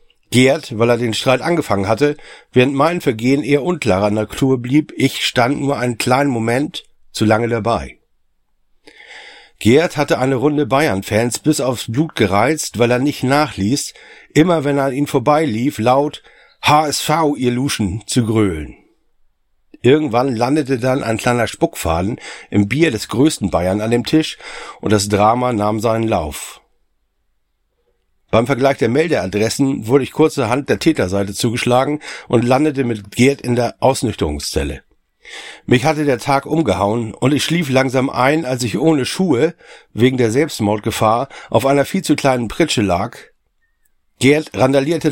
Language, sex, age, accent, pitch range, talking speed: German, male, 60-79, German, 115-150 Hz, 150 wpm